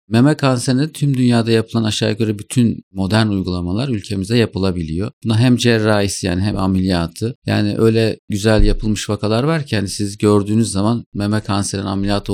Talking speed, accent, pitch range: 155 wpm, native, 95-110 Hz